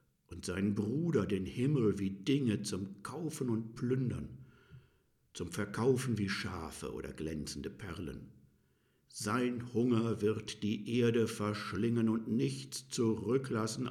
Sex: male